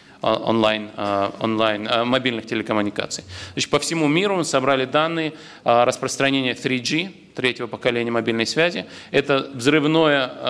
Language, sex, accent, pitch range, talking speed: Russian, male, native, 120-150 Hz, 110 wpm